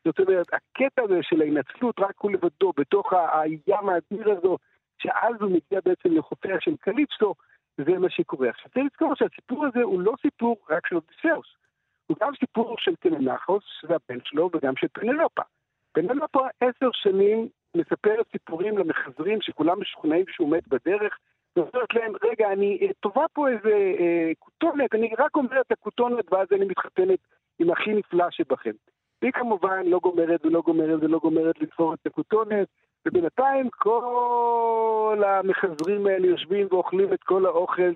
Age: 60-79